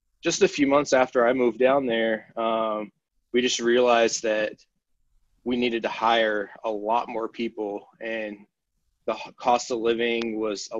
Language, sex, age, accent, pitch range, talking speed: English, male, 20-39, American, 110-120 Hz, 160 wpm